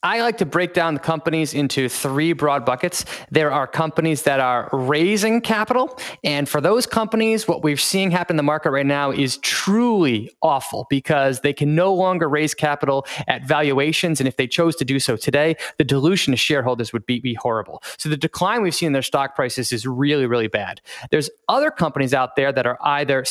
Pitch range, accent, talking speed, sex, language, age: 135-175 Hz, American, 205 wpm, male, English, 20-39